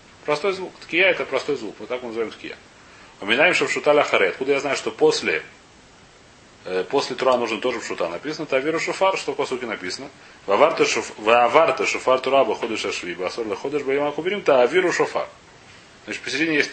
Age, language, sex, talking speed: 30-49, Russian, male, 185 wpm